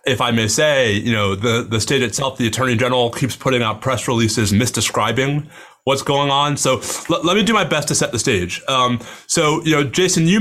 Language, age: English, 30-49